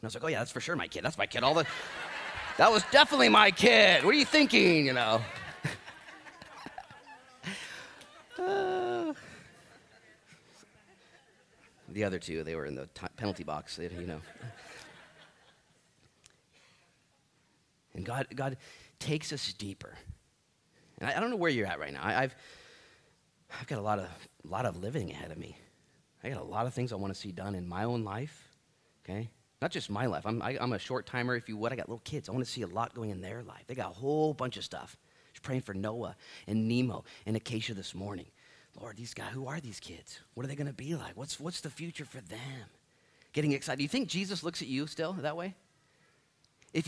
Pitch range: 100-145 Hz